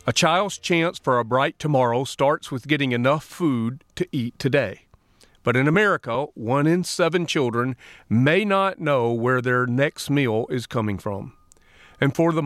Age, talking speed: 40-59, 170 wpm